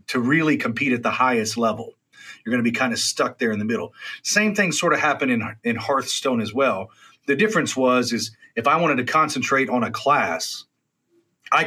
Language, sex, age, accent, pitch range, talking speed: English, male, 30-49, American, 120-155 Hz, 210 wpm